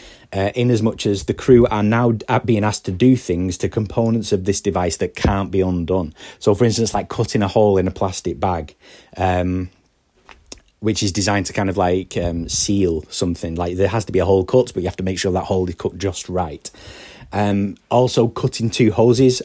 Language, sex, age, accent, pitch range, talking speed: English, male, 30-49, British, 95-115 Hz, 215 wpm